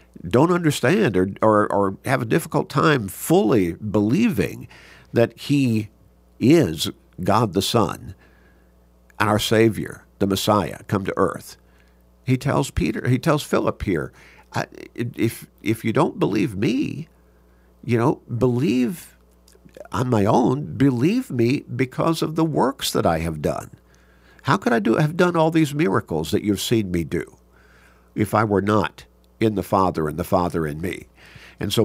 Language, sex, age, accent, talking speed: English, male, 50-69, American, 155 wpm